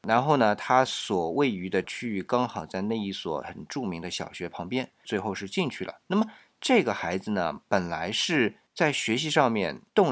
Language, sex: Chinese, male